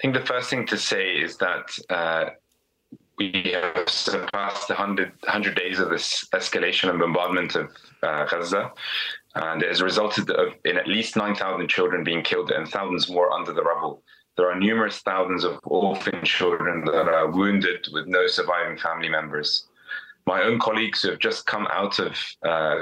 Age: 20-39